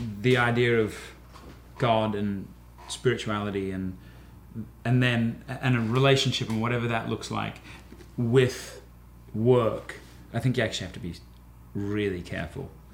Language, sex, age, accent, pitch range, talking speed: English, male, 30-49, British, 105-155 Hz, 130 wpm